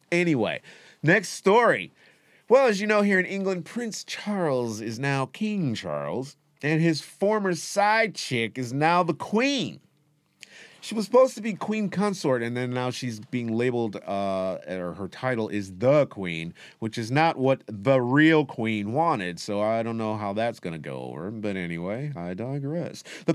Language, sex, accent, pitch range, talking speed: English, male, American, 115-190 Hz, 175 wpm